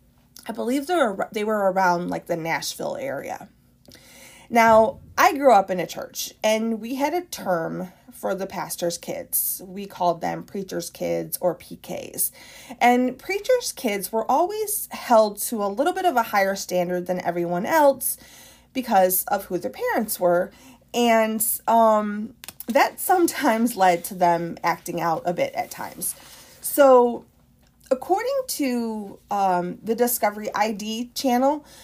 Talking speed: 145 wpm